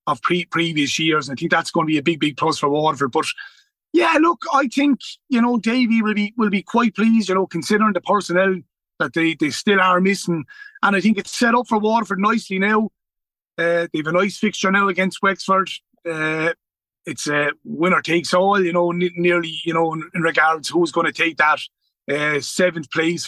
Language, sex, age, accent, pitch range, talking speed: English, male, 30-49, Irish, 160-215 Hz, 215 wpm